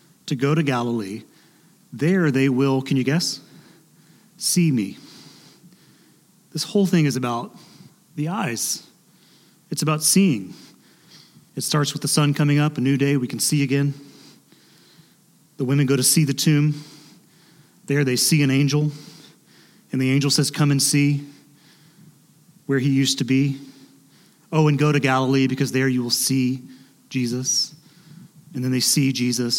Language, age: English, 30-49